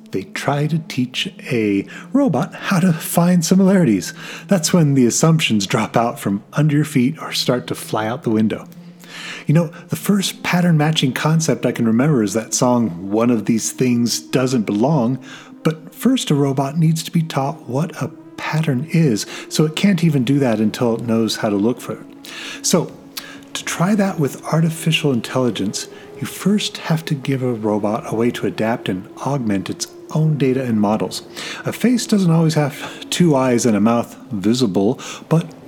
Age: 30-49